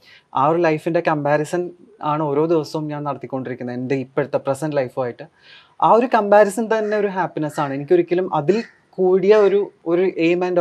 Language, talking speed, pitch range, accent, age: Malayalam, 145 wpm, 150-180 Hz, native, 30-49